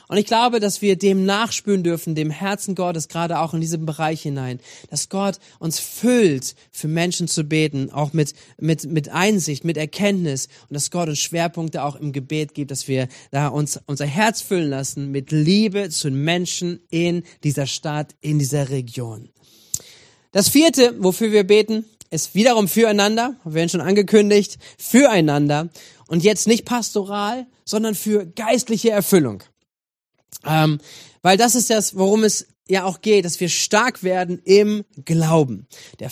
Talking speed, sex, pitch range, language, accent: 160 wpm, male, 150-205 Hz, German, German